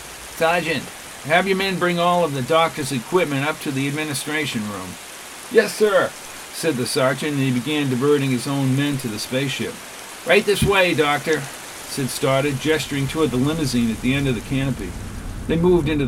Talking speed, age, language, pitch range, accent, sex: 185 wpm, 50-69, English, 125-160 Hz, American, male